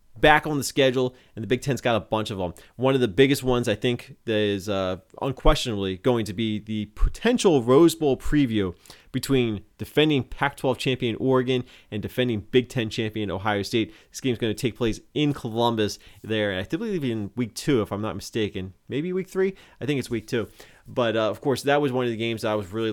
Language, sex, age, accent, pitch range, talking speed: English, male, 30-49, American, 105-130 Hz, 220 wpm